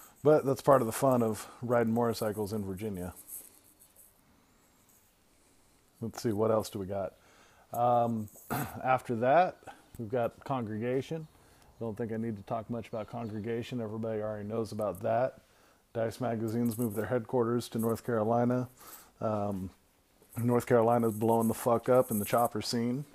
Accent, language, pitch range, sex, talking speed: American, English, 105-120 Hz, male, 150 wpm